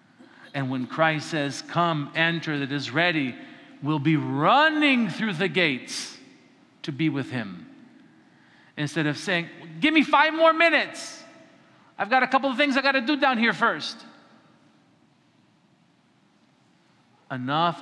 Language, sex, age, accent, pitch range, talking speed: English, male, 50-69, American, 140-195 Hz, 140 wpm